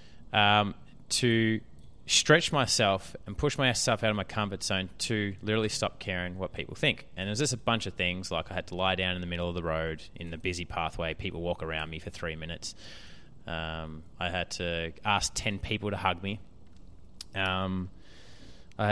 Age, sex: 20-39, male